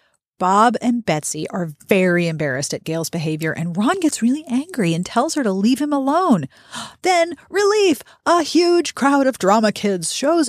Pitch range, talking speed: 180-290 Hz, 170 wpm